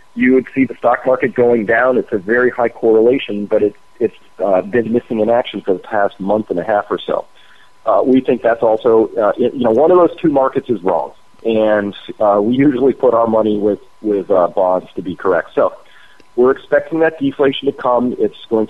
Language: English